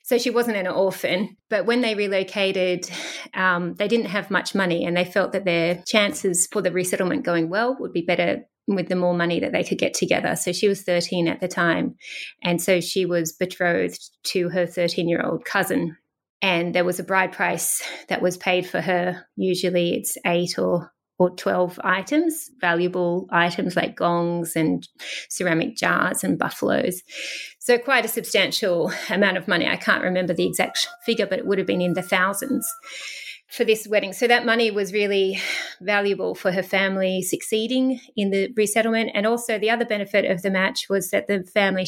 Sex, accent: female, Australian